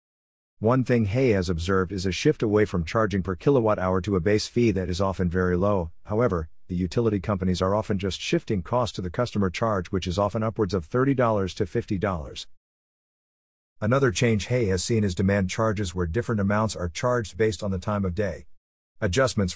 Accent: American